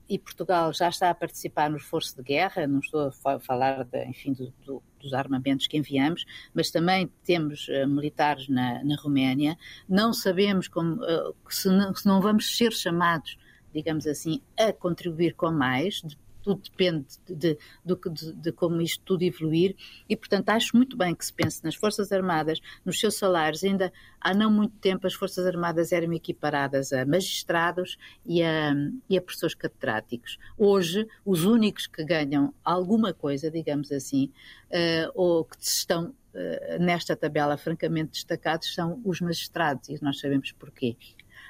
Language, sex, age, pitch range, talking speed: Portuguese, female, 50-69, 150-195 Hz, 160 wpm